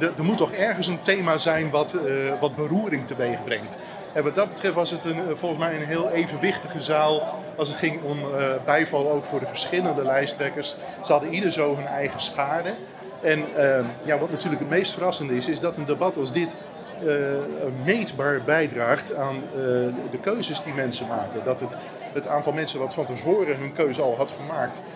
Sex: male